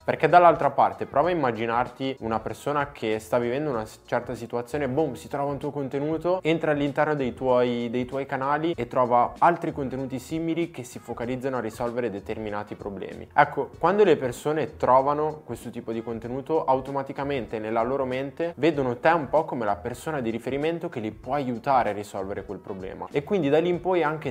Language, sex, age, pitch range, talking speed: Italian, male, 20-39, 115-145 Hz, 190 wpm